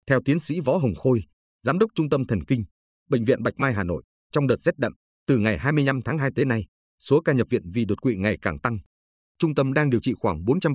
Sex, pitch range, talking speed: male, 95-135 Hz, 255 wpm